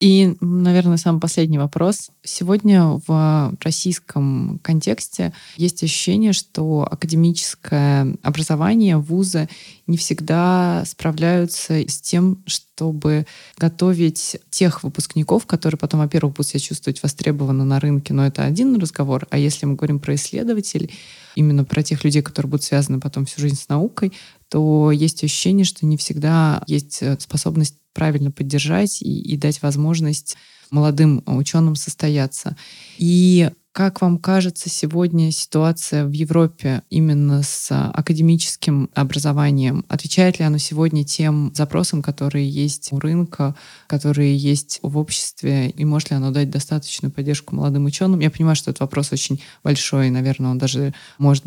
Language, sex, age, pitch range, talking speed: Russian, female, 20-39, 145-170 Hz, 140 wpm